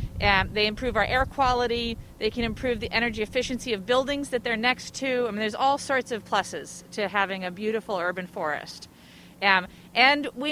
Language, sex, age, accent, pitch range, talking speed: English, female, 40-59, American, 215-260 Hz, 195 wpm